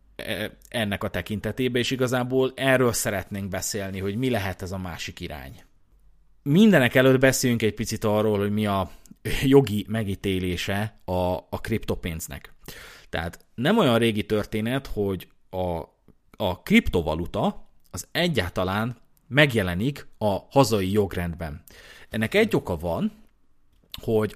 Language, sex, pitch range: Hungarian, male, 95-130 Hz